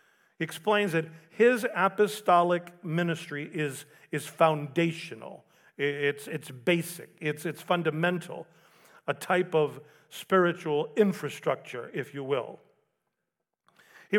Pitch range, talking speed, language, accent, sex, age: 150-190 Hz, 95 wpm, English, American, male, 40-59